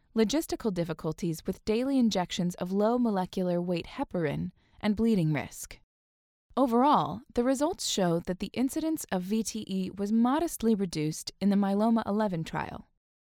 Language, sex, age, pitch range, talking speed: English, female, 20-39, 170-235 Hz, 135 wpm